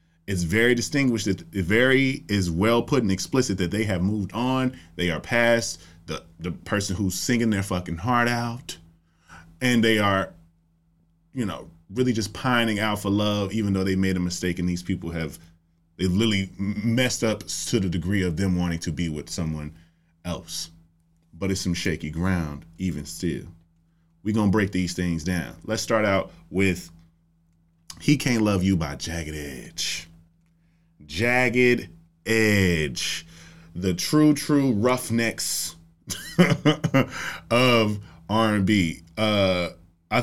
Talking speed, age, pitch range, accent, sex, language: 145 wpm, 30-49, 85-110 Hz, American, male, English